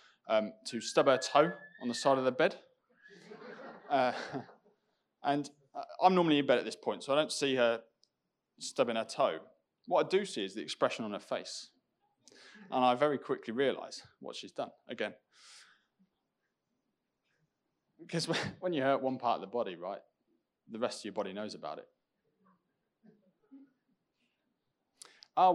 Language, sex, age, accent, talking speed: English, male, 20-39, British, 155 wpm